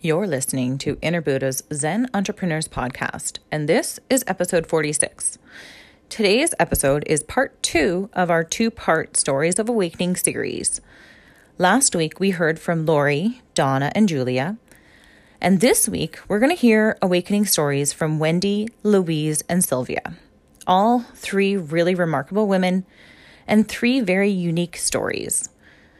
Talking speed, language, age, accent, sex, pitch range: 135 wpm, English, 30-49, American, female, 155-220 Hz